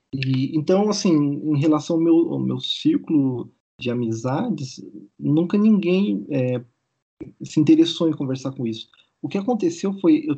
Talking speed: 145 wpm